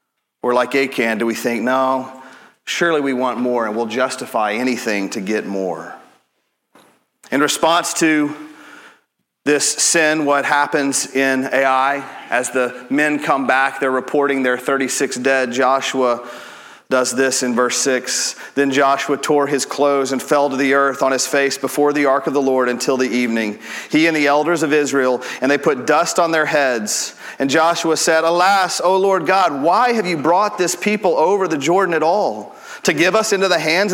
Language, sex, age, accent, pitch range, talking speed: English, male, 40-59, American, 130-175 Hz, 180 wpm